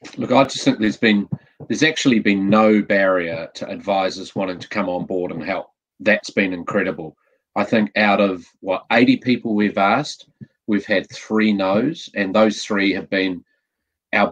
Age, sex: 30-49, male